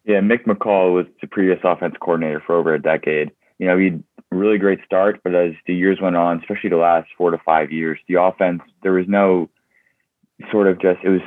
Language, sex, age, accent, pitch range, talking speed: English, male, 20-39, American, 80-100 Hz, 230 wpm